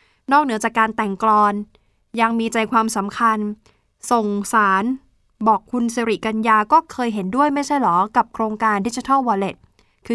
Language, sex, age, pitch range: Thai, female, 20-39, 200-245 Hz